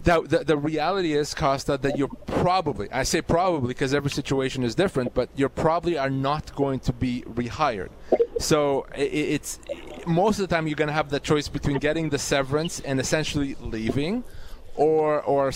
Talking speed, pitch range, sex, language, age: 175 wpm, 145-185 Hz, male, English, 30-49